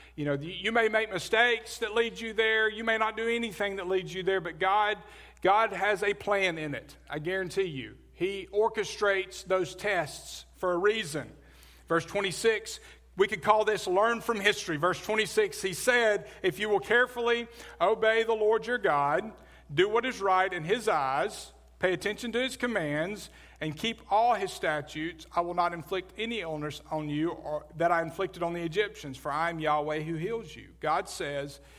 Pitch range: 150-215 Hz